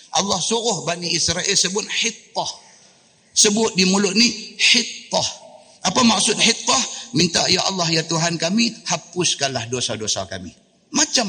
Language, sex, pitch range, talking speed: Malay, male, 160-220 Hz, 130 wpm